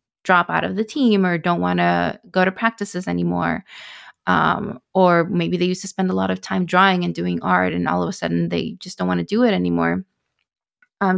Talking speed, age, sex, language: 225 wpm, 20-39, female, English